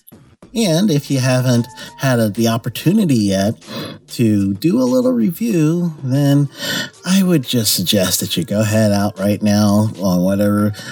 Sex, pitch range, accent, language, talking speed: male, 100-125 Hz, American, English, 150 wpm